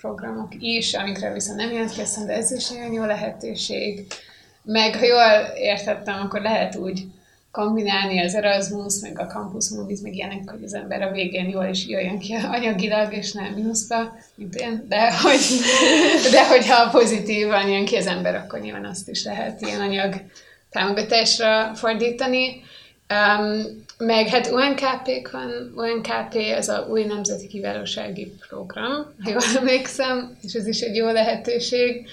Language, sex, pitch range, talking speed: Hungarian, female, 200-230 Hz, 155 wpm